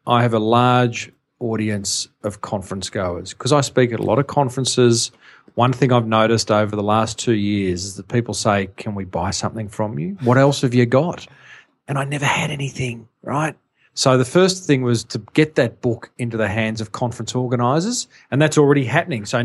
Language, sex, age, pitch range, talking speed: English, male, 40-59, 115-145 Hz, 205 wpm